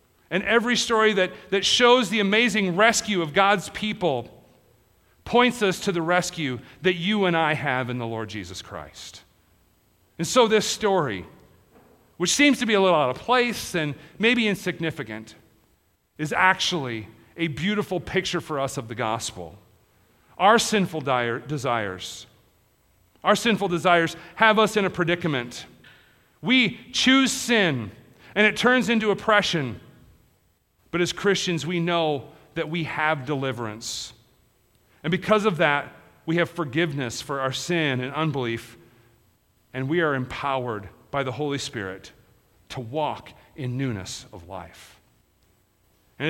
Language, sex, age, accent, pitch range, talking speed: English, male, 40-59, American, 130-200 Hz, 140 wpm